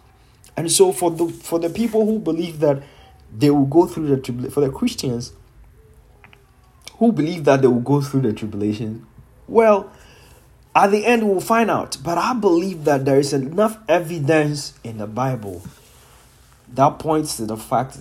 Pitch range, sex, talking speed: 120-165 Hz, male, 170 wpm